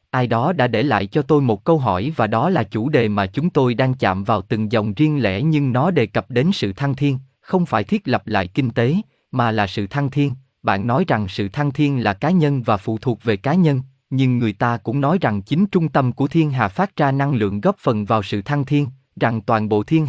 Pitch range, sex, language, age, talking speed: 110-150 Hz, male, Vietnamese, 20-39, 255 wpm